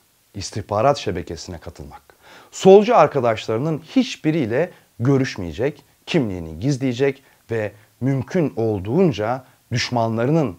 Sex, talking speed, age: male, 75 wpm, 40-59